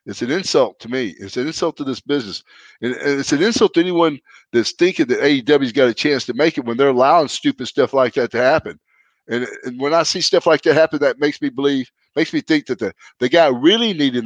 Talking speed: 245 wpm